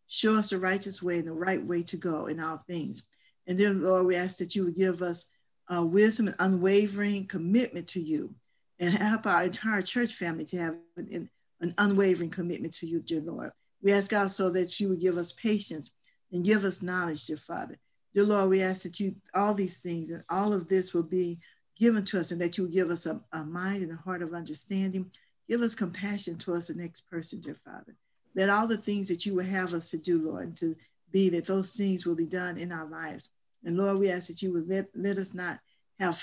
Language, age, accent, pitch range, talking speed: English, 50-69, American, 170-195 Hz, 230 wpm